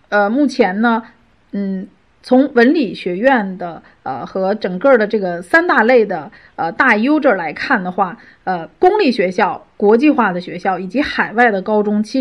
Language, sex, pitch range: Chinese, female, 195-260 Hz